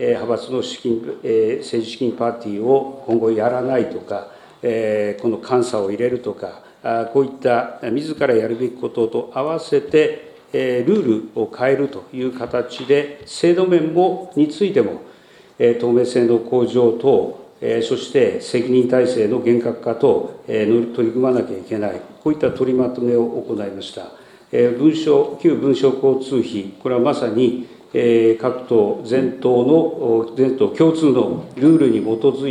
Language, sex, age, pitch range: Japanese, male, 40-59, 115-145 Hz